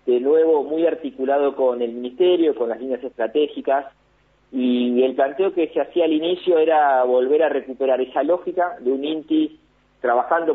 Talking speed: 165 wpm